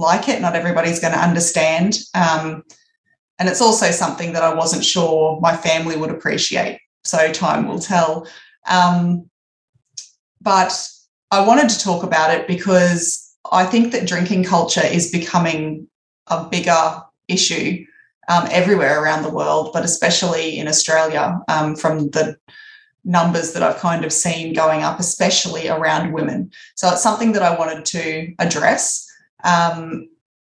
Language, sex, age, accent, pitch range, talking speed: English, female, 20-39, Australian, 160-185 Hz, 145 wpm